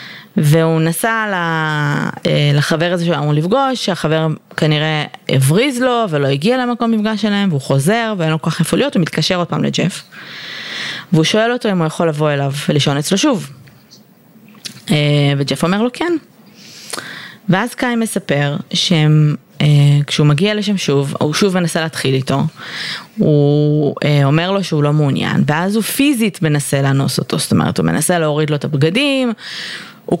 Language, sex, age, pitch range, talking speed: Hebrew, female, 20-39, 150-200 Hz, 150 wpm